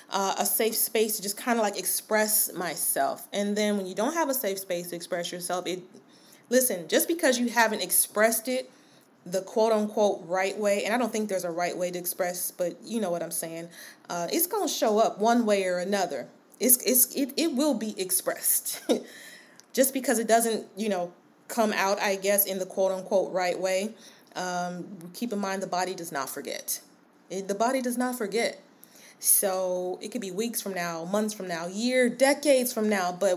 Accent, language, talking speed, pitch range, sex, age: American, English, 205 wpm, 180-225 Hz, female, 20-39